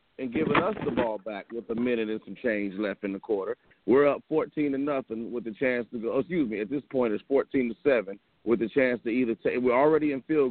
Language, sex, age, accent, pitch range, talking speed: English, male, 40-59, American, 110-135 Hz, 255 wpm